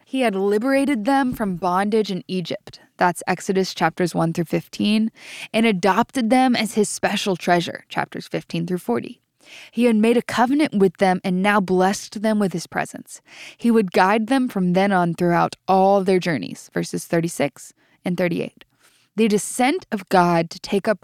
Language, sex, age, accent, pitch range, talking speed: English, female, 10-29, American, 175-225 Hz, 165 wpm